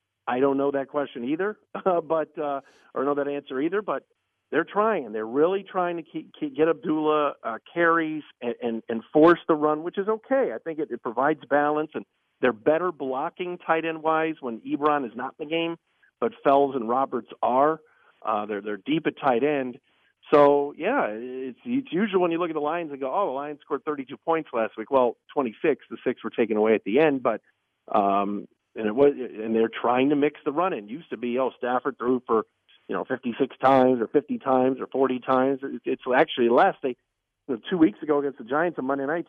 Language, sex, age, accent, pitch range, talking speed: English, male, 50-69, American, 125-155 Hz, 225 wpm